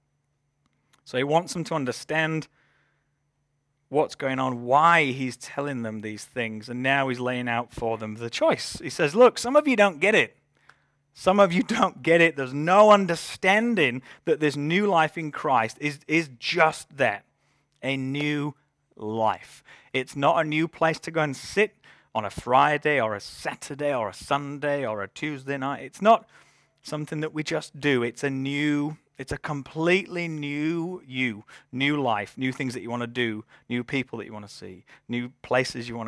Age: 30-49